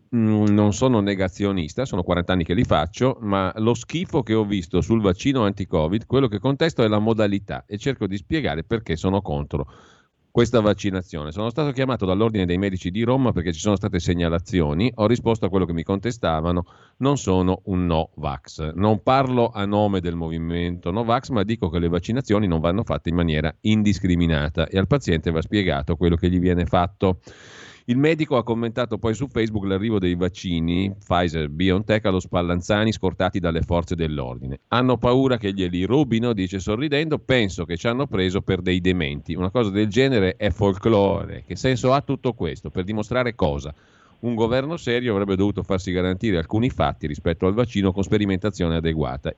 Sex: male